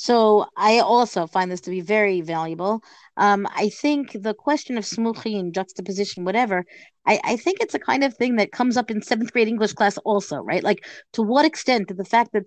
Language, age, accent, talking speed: English, 30-49, American, 210 wpm